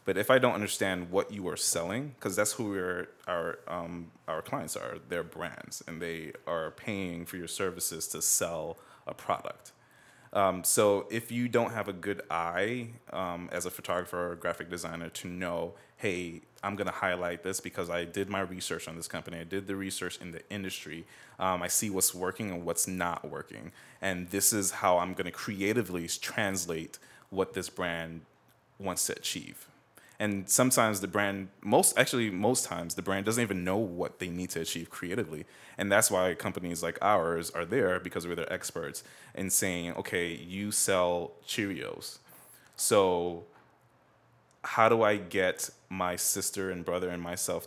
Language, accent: English, American